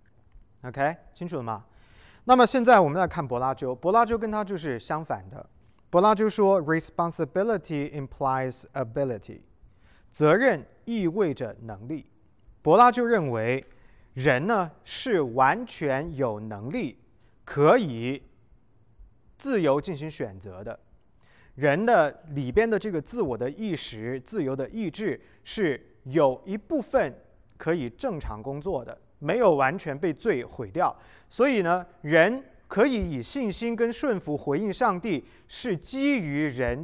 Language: Chinese